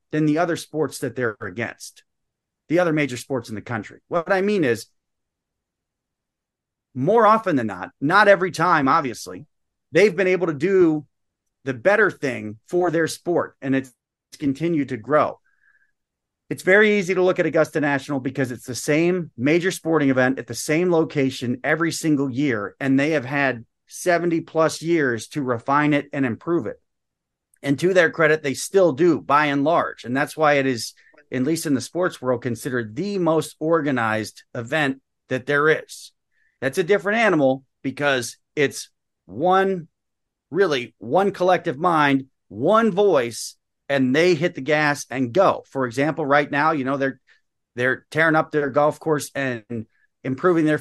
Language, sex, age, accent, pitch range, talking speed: English, male, 30-49, American, 130-170 Hz, 170 wpm